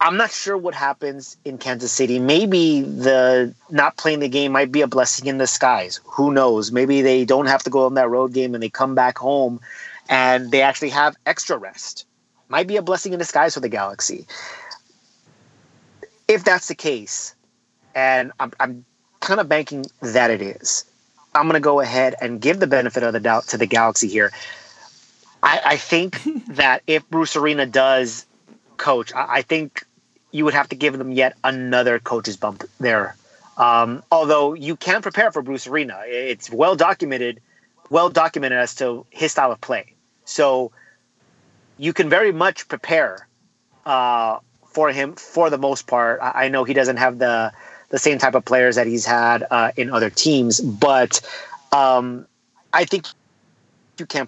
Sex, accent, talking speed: male, American, 175 wpm